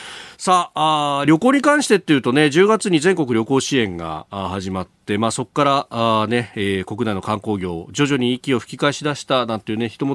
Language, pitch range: Japanese, 105-160 Hz